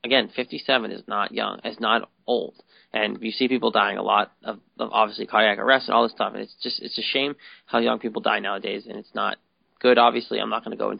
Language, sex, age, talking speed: English, male, 20-39, 250 wpm